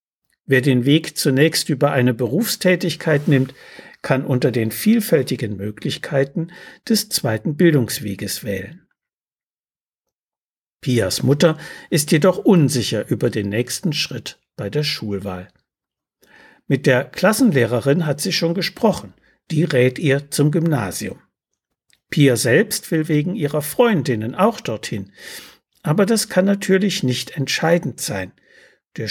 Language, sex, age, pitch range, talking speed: German, male, 60-79, 120-165 Hz, 120 wpm